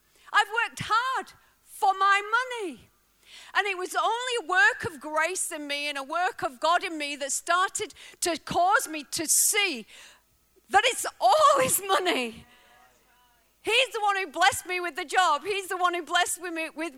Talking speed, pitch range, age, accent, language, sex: 185 wpm, 280-365 Hz, 40-59, British, English, female